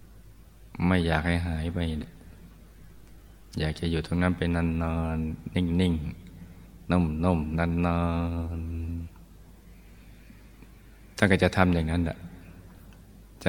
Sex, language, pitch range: male, Thai, 80-95 Hz